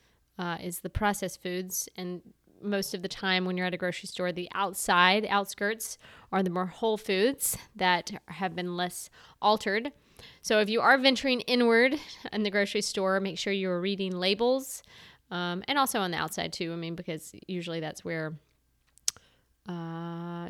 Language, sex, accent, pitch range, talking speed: English, female, American, 175-215 Hz, 170 wpm